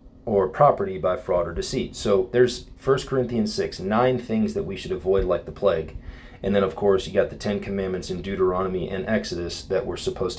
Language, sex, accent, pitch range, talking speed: English, male, American, 95-130 Hz, 210 wpm